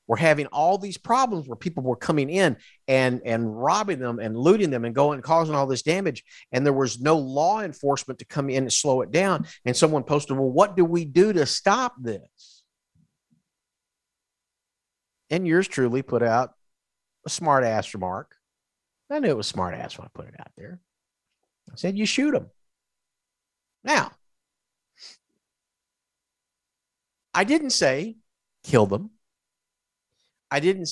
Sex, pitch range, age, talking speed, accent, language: male, 125-180 Hz, 50-69, 155 wpm, American, English